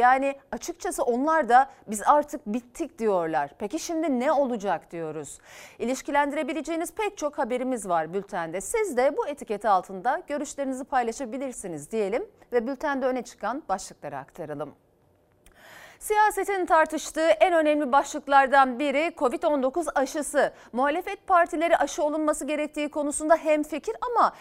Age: 40-59